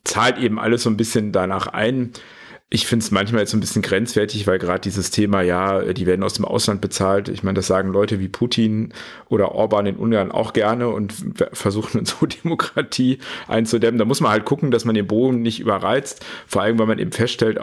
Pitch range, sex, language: 105-120 Hz, male, German